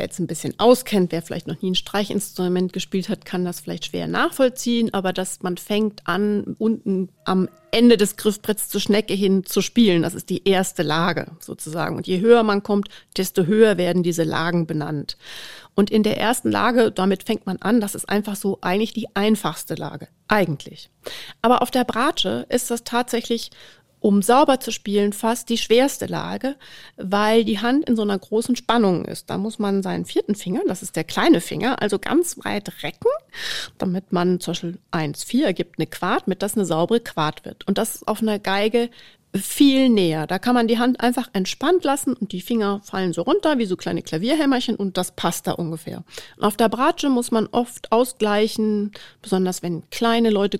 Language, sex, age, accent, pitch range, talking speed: German, female, 40-59, German, 185-235 Hz, 190 wpm